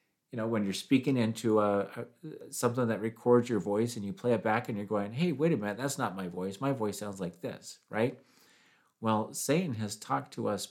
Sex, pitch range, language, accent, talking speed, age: male, 100-135 Hz, English, American, 220 wpm, 40-59